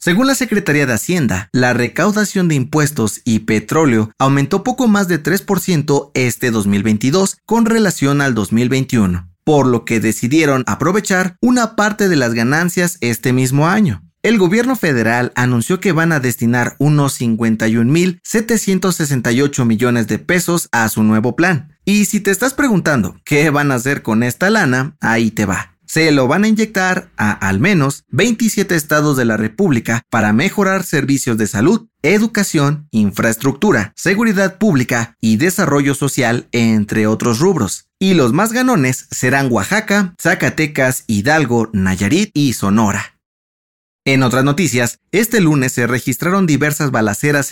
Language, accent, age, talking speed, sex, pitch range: Spanish, Mexican, 30-49, 145 wpm, male, 120-185 Hz